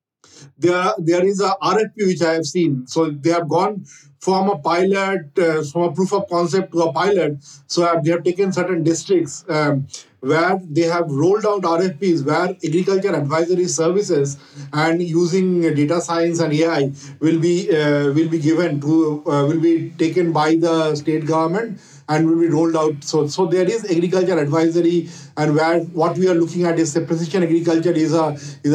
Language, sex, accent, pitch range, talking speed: English, male, Indian, 150-170 Hz, 185 wpm